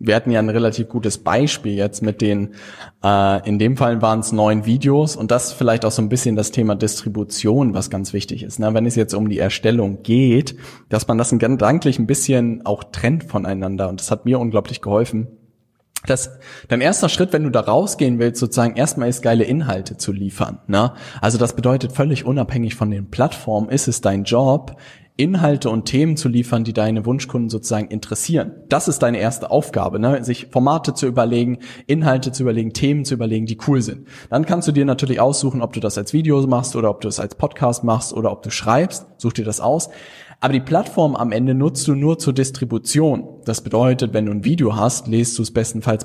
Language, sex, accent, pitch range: German, male, German, 110-130 Hz